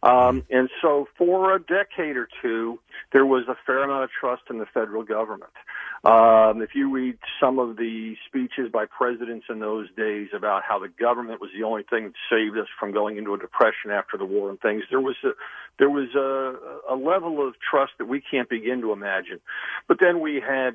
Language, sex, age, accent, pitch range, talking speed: English, male, 50-69, American, 110-140 Hz, 210 wpm